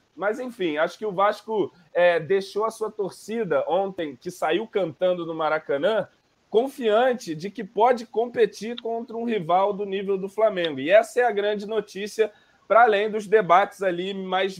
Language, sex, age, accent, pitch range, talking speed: Portuguese, male, 20-39, Brazilian, 185-220 Hz, 165 wpm